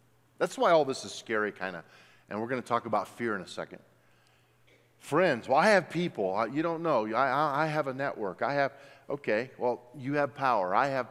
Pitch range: 110-155 Hz